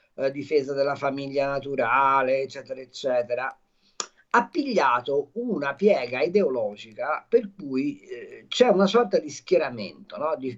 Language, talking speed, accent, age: Italian, 125 wpm, native, 50-69